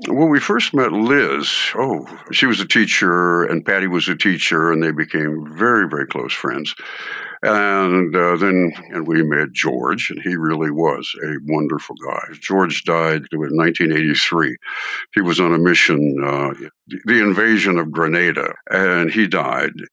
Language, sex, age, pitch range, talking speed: English, male, 60-79, 80-95 Hz, 155 wpm